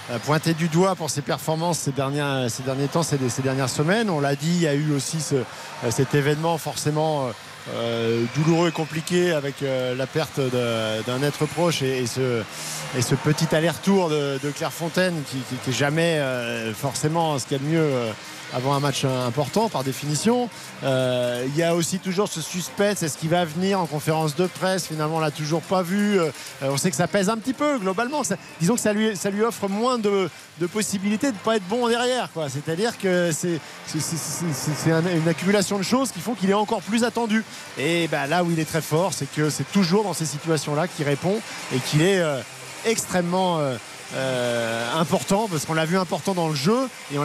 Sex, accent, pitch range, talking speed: male, French, 140-185 Hz, 220 wpm